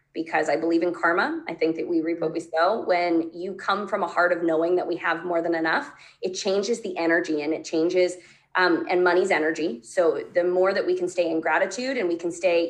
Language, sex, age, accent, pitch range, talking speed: English, female, 20-39, American, 165-210 Hz, 240 wpm